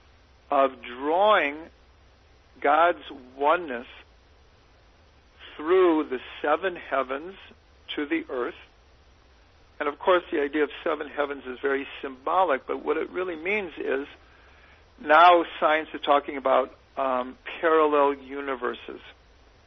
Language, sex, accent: English, male, American